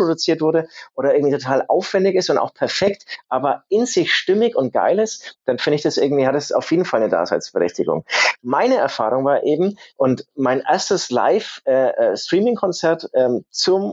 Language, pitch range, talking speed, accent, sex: German, 135-185 Hz, 170 wpm, German, male